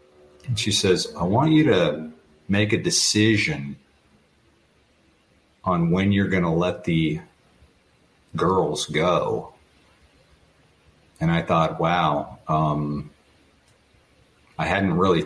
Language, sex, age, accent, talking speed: English, male, 50-69, American, 105 wpm